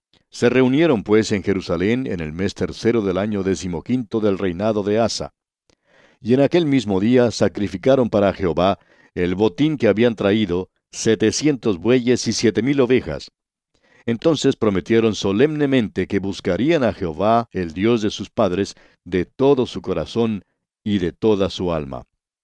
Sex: male